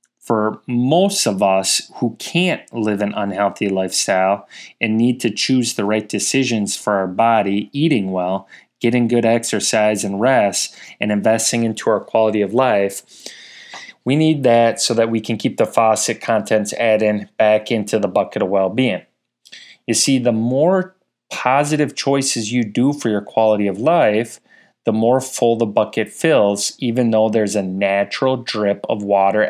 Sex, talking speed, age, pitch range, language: male, 160 wpm, 30-49, 100-120 Hz, English